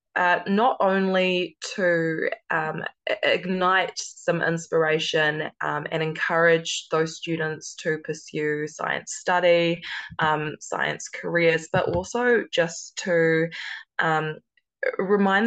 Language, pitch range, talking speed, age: English, 155-180 Hz, 100 wpm, 20-39